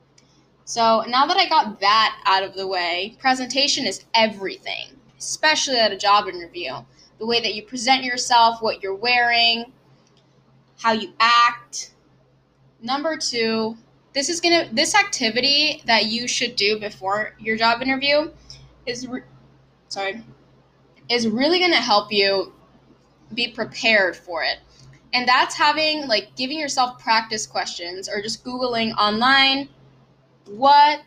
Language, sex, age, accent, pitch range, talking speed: English, female, 10-29, American, 210-270 Hz, 135 wpm